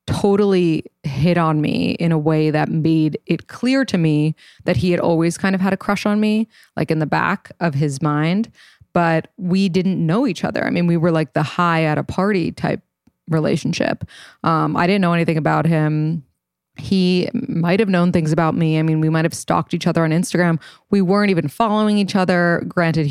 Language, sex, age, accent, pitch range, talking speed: English, female, 20-39, American, 155-190 Hz, 210 wpm